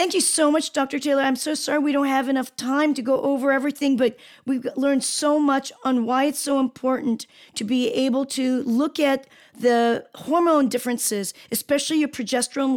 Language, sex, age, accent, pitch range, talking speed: English, female, 40-59, American, 235-270 Hz, 190 wpm